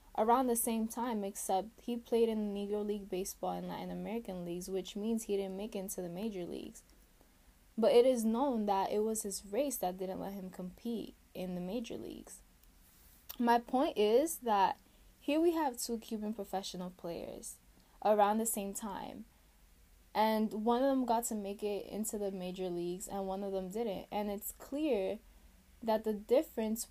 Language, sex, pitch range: English, female, 185-230 Hz